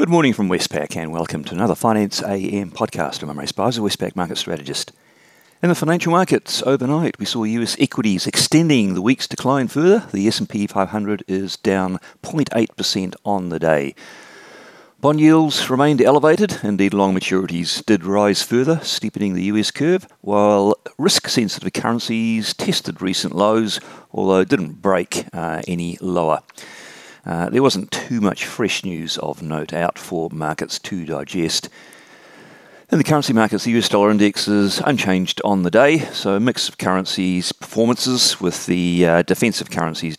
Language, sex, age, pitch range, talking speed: English, male, 40-59, 85-115 Hz, 155 wpm